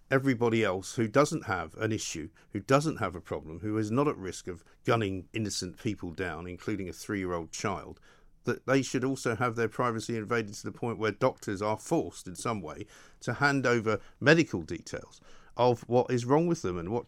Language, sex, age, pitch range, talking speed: English, male, 50-69, 100-130 Hz, 205 wpm